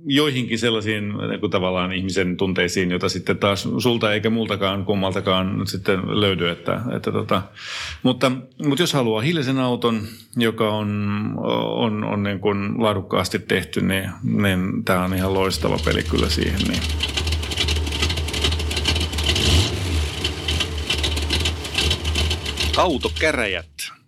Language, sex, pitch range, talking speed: Finnish, male, 90-110 Hz, 110 wpm